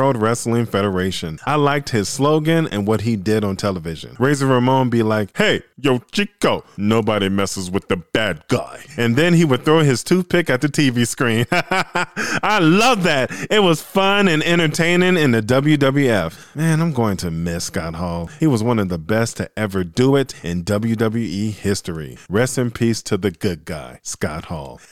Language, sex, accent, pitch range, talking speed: English, male, American, 105-150 Hz, 185 wpm